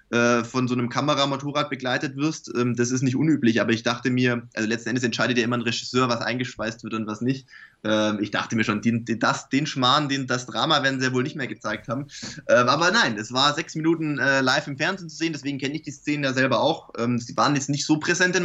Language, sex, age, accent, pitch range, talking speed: German, male, 20-39, German, 120-145 Hz, 240 wpm